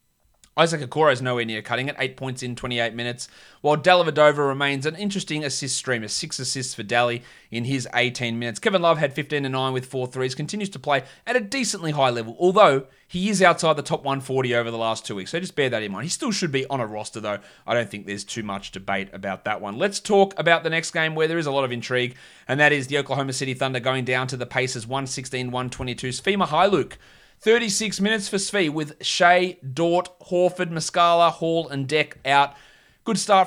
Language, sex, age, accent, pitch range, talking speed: English, male, 30-49, Australian, 125-170 Hz, 215 wpm